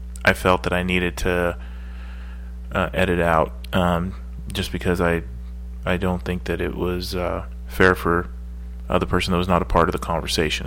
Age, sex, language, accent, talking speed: 30-49, male, English, American, 185 wpm